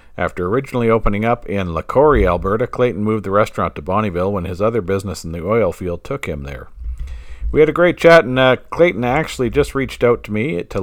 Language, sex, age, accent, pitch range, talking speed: English, male, 50-69, American, 85-130 Hz, 215 wpm